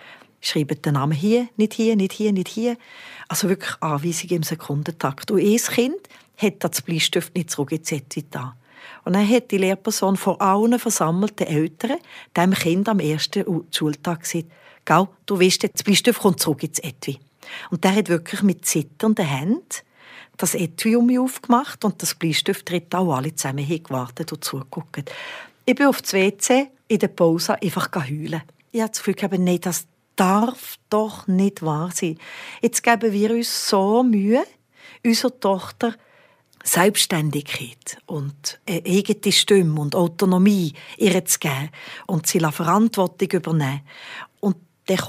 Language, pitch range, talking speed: German, 160-215 Hz, 150 wpm